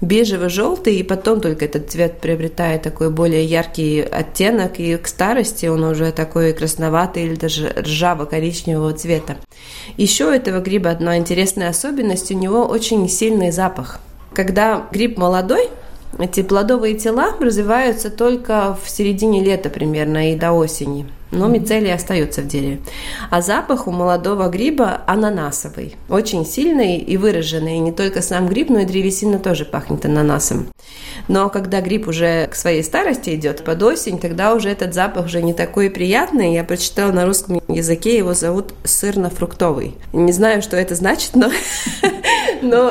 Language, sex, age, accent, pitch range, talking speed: Russian, female, 20-39, native, 165-220 Hz, 150 wpm